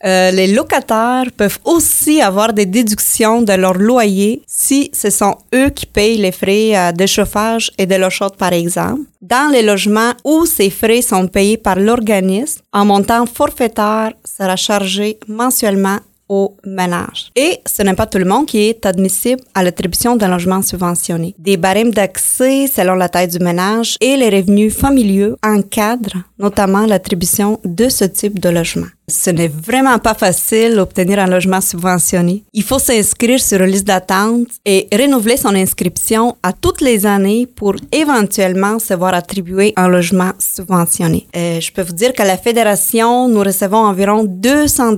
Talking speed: 165 wpm